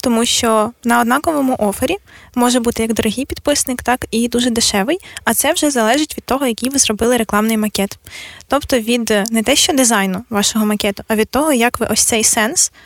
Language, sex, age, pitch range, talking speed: Ukrainian, female, 20-39, 225-265 Hz, 190 wpm